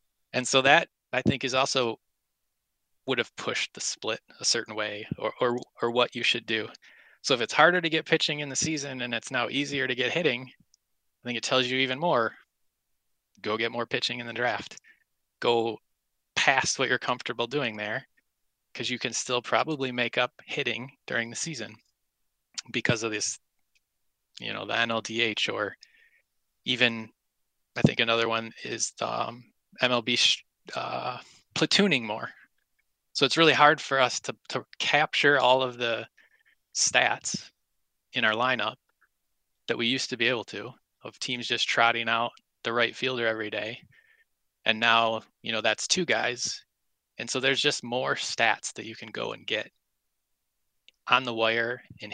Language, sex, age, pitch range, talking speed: English, male, 20-39, 115-135 Hz, 170 wpm